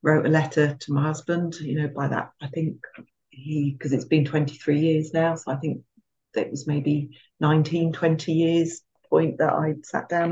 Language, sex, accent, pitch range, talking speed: English, female, British, 145-165 Hz, 190 wpm